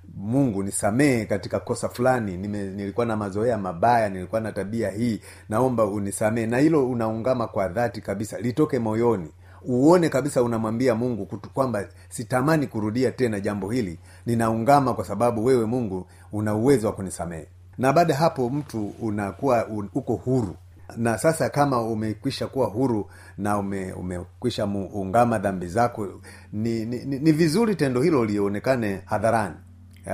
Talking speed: 145 wpm